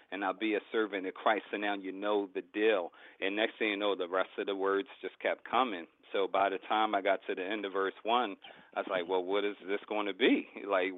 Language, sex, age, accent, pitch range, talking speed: English, male, 40-59, American, 95-110 Hz, 270 wpm